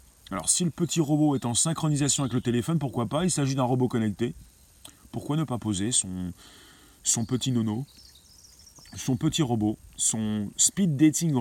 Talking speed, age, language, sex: 170 wpm, 30-49, French, male